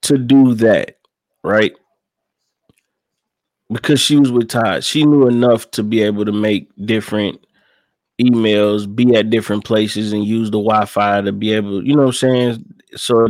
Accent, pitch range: American, 110-140 Hz